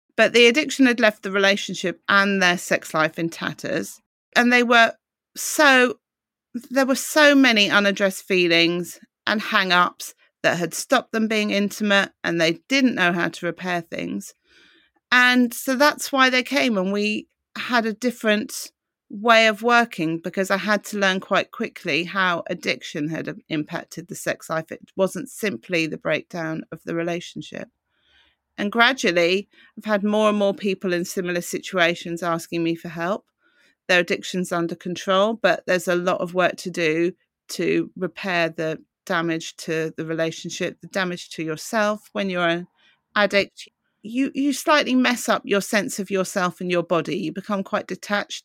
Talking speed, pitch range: 165 wpm, 175-225 Hz